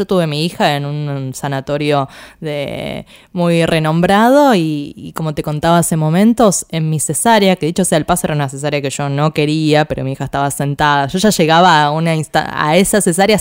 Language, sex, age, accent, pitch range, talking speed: Spanish, female, 20-39, Argentinian, 150-185 Hz, 210 wpm